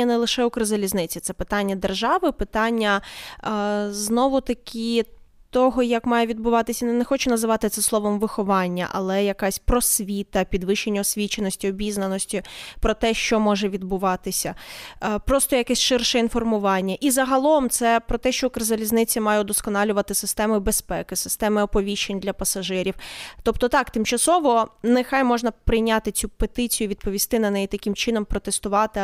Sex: female